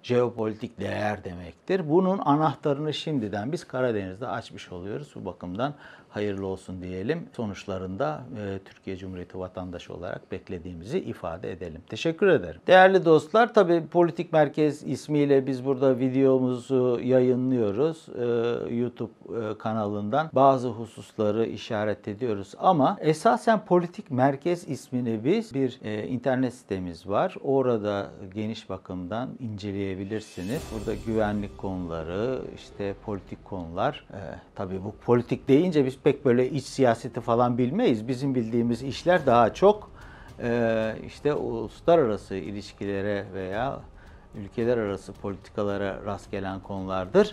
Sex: male